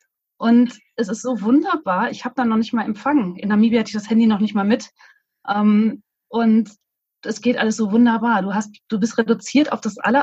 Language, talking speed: German, 210 wpm